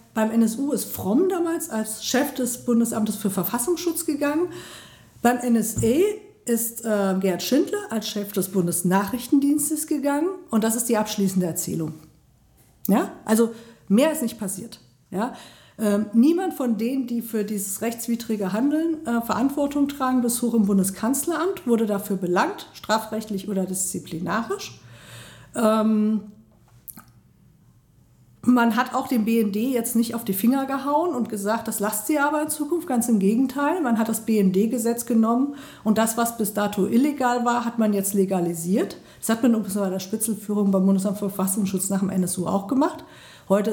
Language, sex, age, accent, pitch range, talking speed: German, female, 50-69, German, 200-255 Hz, 155 wpm